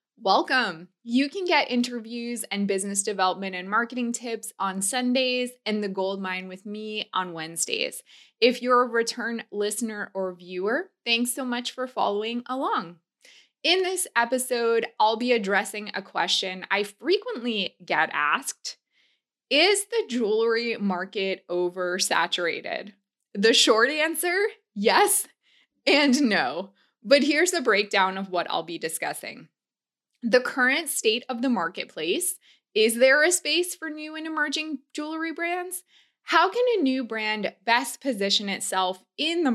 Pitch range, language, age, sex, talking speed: 190-275 Hz, English, 20-39, female, 140 wpm